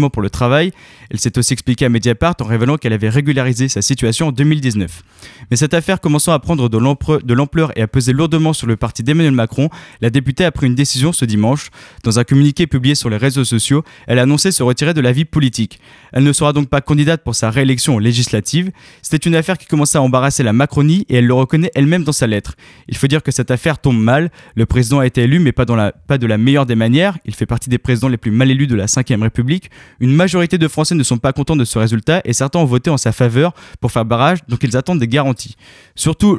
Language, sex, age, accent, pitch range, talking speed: French, male, 20-39, French, 120-150 Hz, 245 wpm